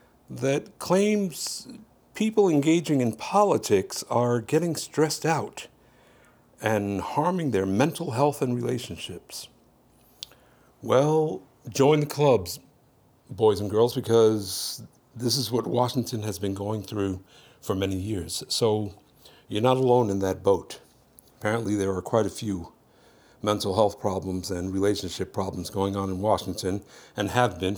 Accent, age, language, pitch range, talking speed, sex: American, 60-79, English, 100-145 Hz, 135 wpm, male